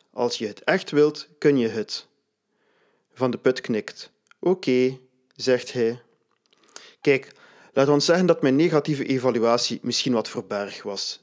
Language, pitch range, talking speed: Dutch, 115-145 Hz, 150 wpm